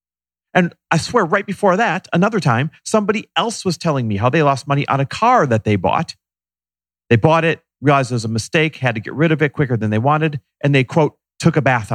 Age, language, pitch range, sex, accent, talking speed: 40-59, English, 115-180 Hz, male, American, 235 wpm